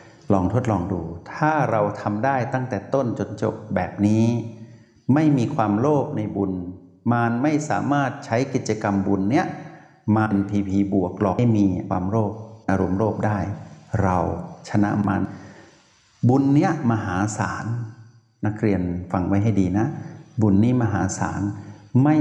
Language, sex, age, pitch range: Thai, male, 60-79, 100-130 Hz